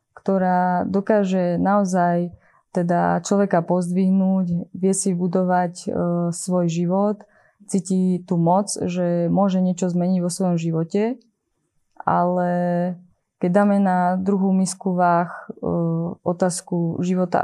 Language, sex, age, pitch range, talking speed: Slovak, female, 20-39, 175-190 Hz, 110 wpm